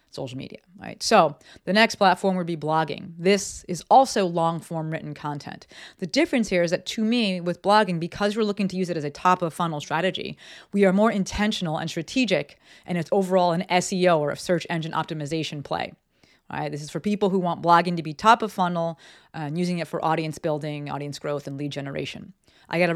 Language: English